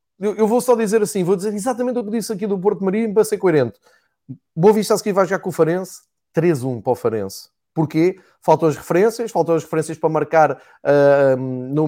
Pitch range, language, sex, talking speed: 150-195 Hz, Portuguese, male, 205 wpm